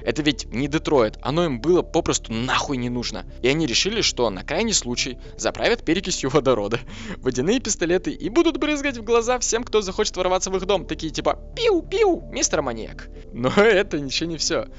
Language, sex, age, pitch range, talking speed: Russian, male, 20-39, 115-190 Hz, 185 wpm